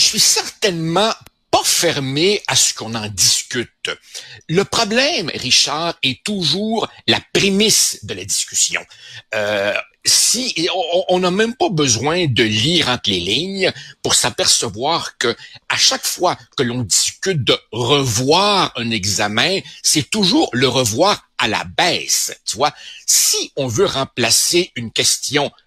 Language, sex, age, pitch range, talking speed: French, male, 60-79, 120-185 Hz, 145 wpm